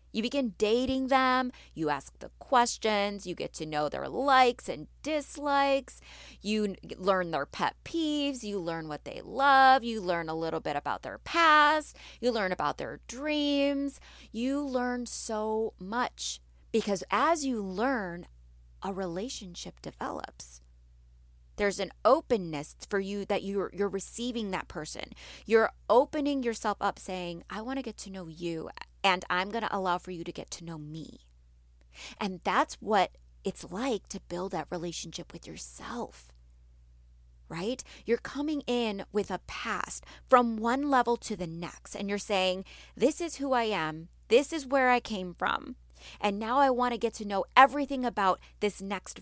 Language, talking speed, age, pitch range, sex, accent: English, 165 wpm, 30-49, 170-250 Hz, female, American